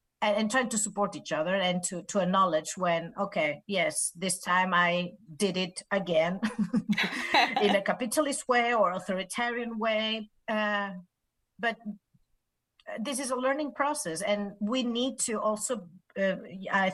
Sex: female